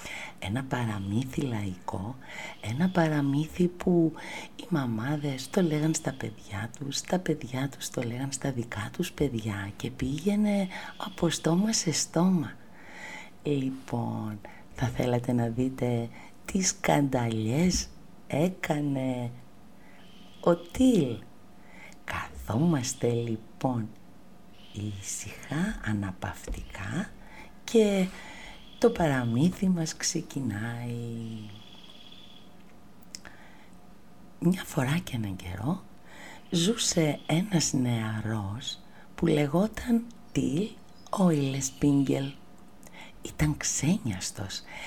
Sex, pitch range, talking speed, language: female, 120-180 Hz, 80 wpm, Greek